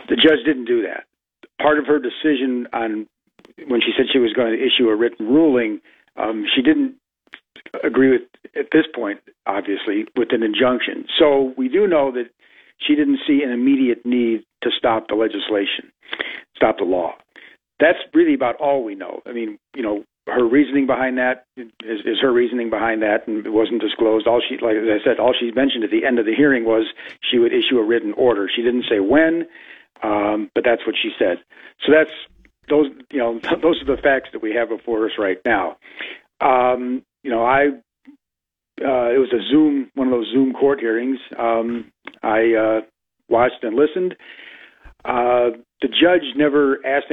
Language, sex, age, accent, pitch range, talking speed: English, male, 50-69, American, 120-160 Hz, 190 wpm